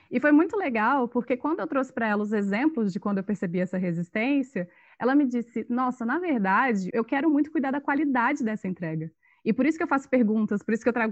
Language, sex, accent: Portuguese, female, Brazilian